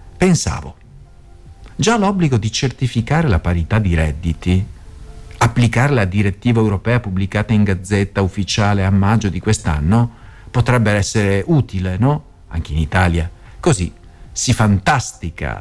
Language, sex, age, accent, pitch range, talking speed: Italian, male, 50-69, native, 95-145 Hz, 120 wpm